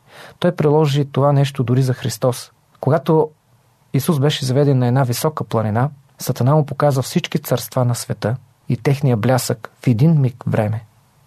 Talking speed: 155 wpm